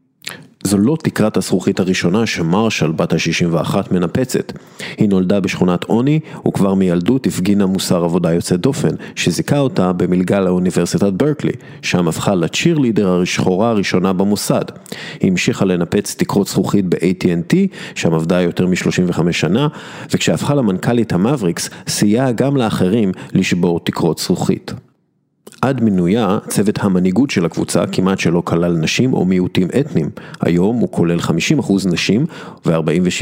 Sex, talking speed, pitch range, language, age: male, 125 wpm, 90-140 Hz, Hebrew, 40-59